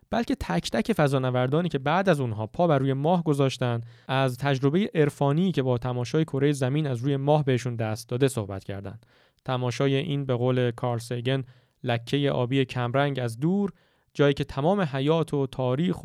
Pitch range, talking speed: 120-145 Hz, 170 wpm